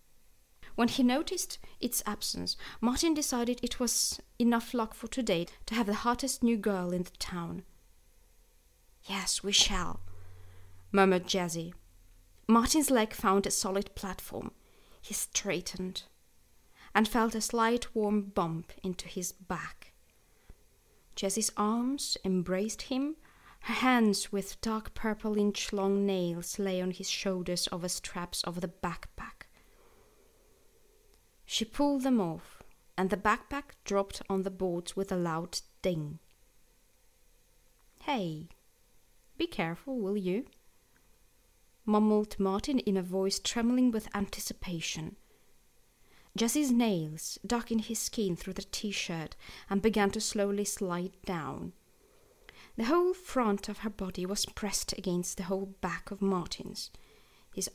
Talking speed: 130 wpm